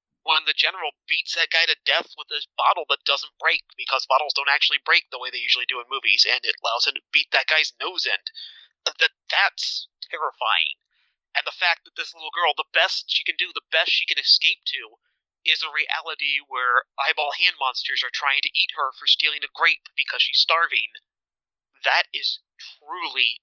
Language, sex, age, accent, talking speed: English, male, 30-49, American, 200 wpm